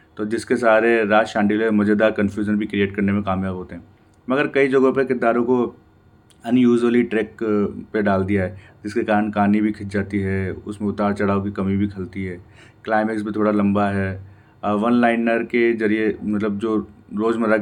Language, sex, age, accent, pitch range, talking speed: Hindi, male, 30-49, native, 105-115 Hz, 185 wpm